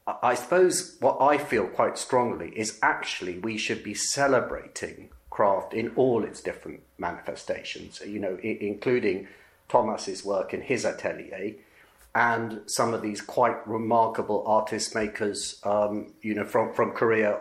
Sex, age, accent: male, 40-59, British